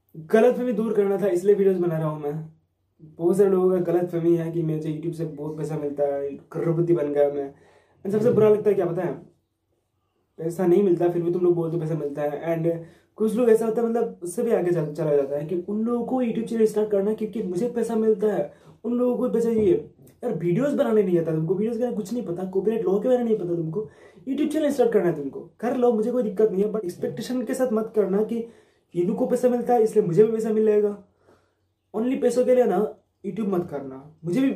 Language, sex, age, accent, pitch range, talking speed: Hindi, male, 20-39, native, 170-220 Hz, 215 wpm